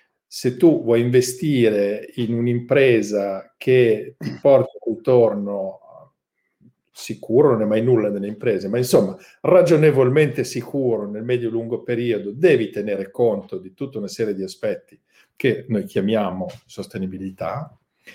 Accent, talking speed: native, 125 wpm